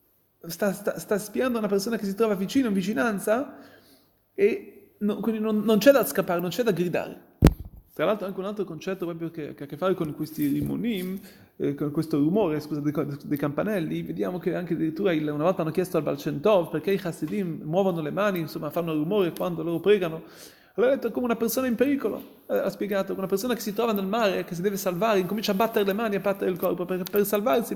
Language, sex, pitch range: Italian, male, 160-210 Hz